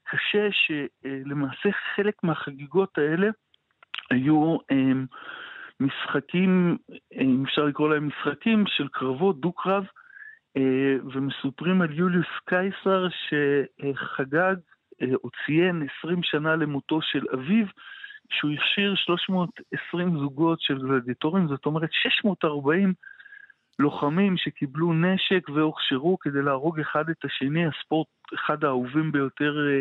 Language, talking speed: Hebrew, 100 wpm